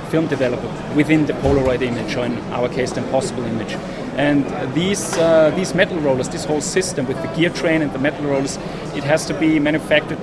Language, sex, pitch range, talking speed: English, male, 140-160 Hz, 205 wpm